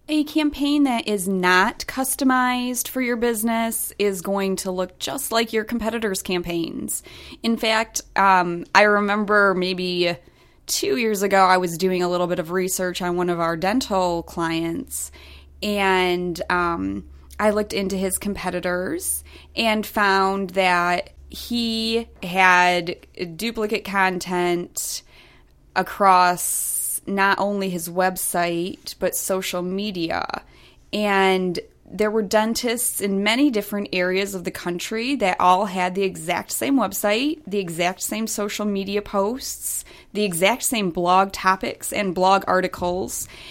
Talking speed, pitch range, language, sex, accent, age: 130 wpm, 180-220 Hz, English, female, American, 20-39